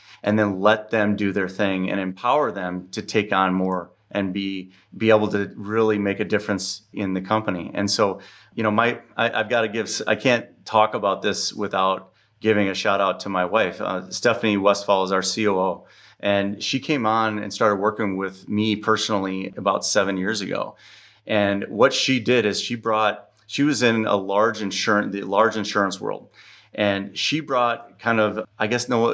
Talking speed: 195 wpm